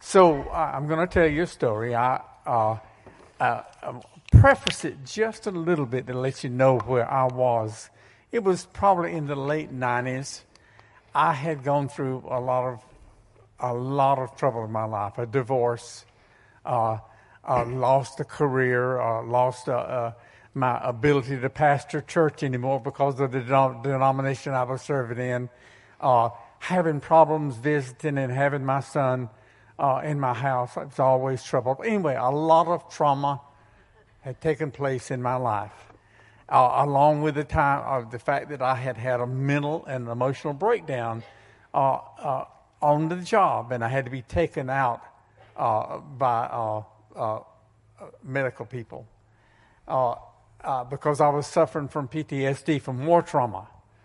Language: English